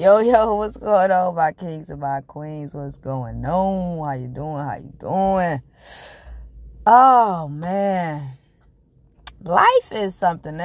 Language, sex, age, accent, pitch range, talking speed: English, female, 20-39, American, 135-180 Hz, 135 wpm